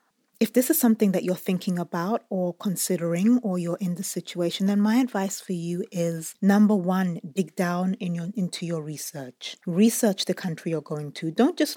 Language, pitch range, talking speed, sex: English, 170-210 Hz, 185 wpm, female